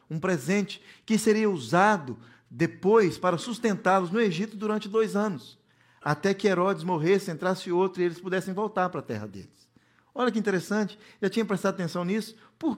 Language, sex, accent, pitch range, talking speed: Portuguese, male, Brazilian, 180-245 Hz, 170 wpm